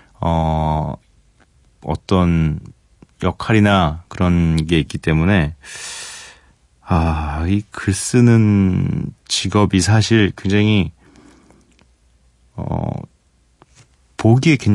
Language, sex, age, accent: Korean, male, 30-49, native